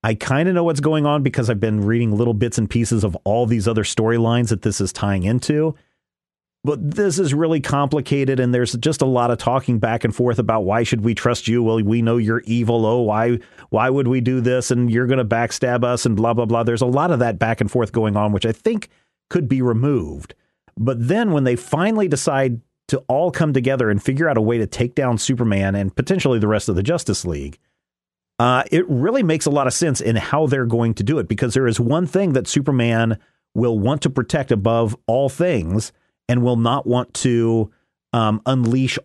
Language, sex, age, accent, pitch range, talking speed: English, male, 40-59, American, 110-140 Hz, 225 wpm